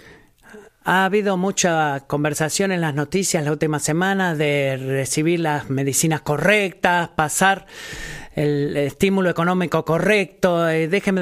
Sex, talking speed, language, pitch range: male, 110 wpm, Spanish, 160-200 Hz